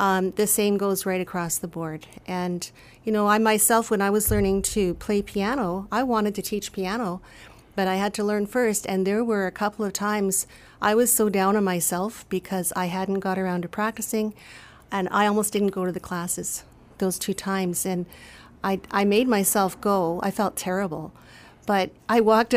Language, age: English, 40-59